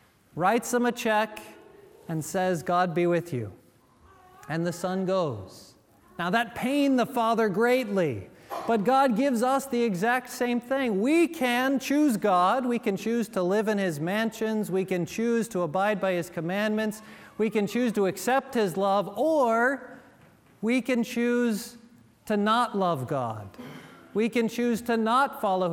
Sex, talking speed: male, 160 wpm